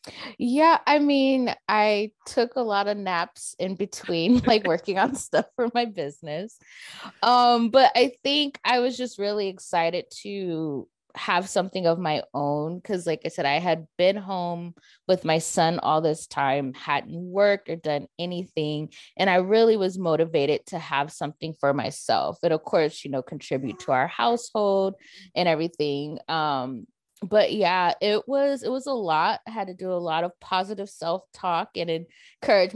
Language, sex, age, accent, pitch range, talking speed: English, female, 20-39, American, 155-205 Hz, 170 wpm